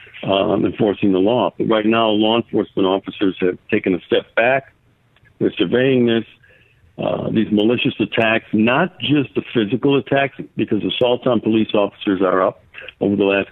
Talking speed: 165 wpm